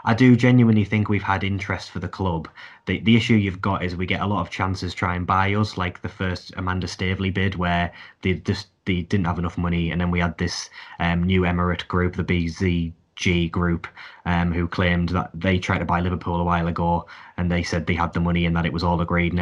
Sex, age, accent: male, 20-39, British